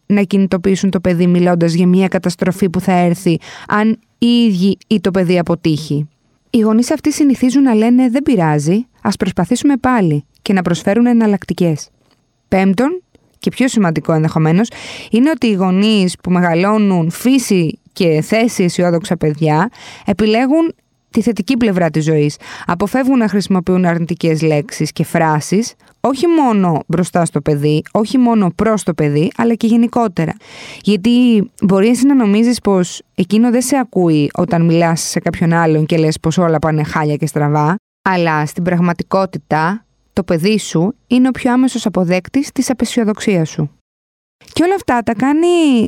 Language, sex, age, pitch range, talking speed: Greek, female, 20-39, 170-235 Hz, 150 wpm